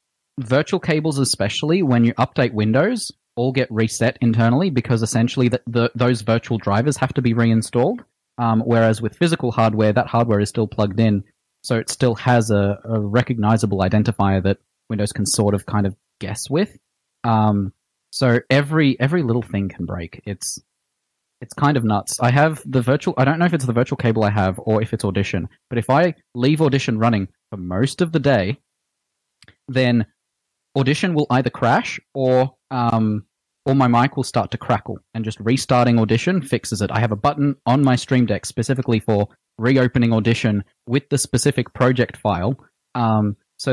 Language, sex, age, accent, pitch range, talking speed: English, male, 20-39, Australian, 110-130 Hz, 180 wpm